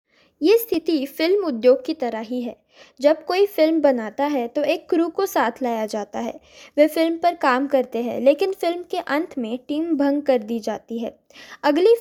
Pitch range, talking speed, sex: 245-310 Hz, 195 wpm, female